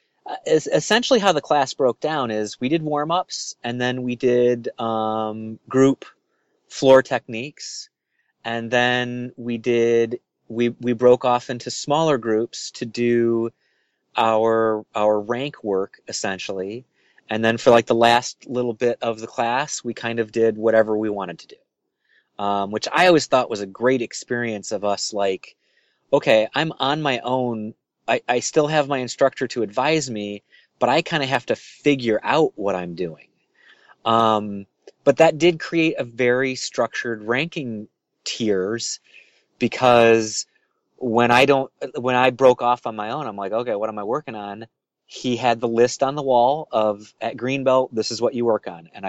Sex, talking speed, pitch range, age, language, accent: male, 170 wpm, 110-135 Hz, 30-49, English, American